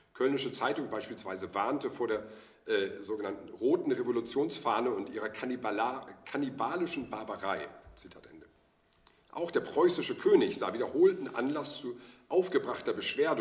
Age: 50-69